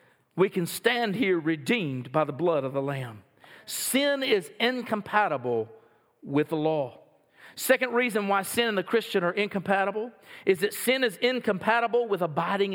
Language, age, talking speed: English, 40-59, 155 wpm